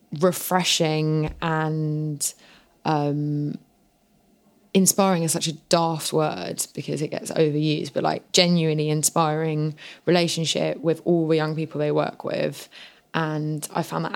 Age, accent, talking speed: 20-39, British, 125 wpm